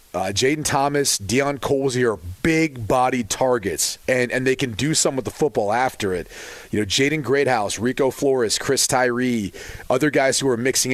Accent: American